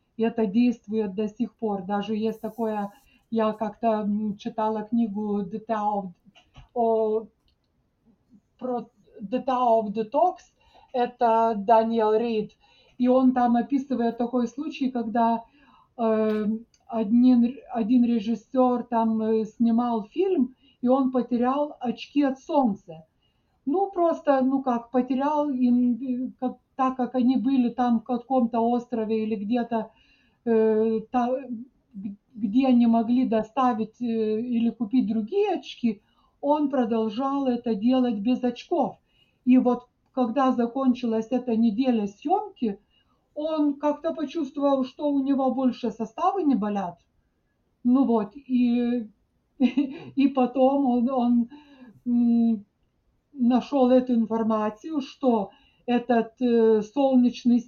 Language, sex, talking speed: Russian, female, 105 wpm